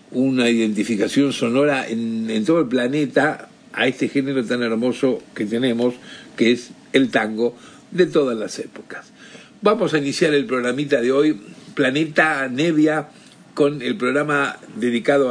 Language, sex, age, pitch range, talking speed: Spanish, male, 60-79, 130-185 Hz, 140 wpm